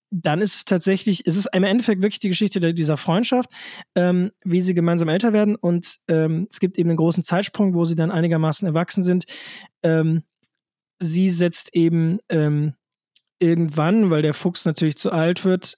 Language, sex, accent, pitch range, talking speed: German, male, German, 160-195 Hz, 175 wpm